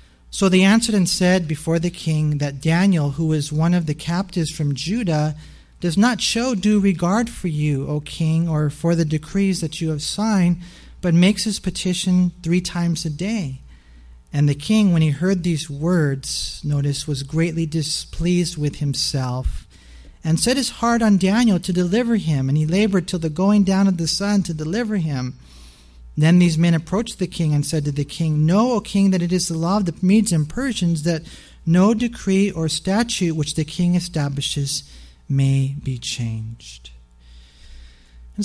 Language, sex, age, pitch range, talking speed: English, male, 40-59, 150-190 Hz, 180 wpm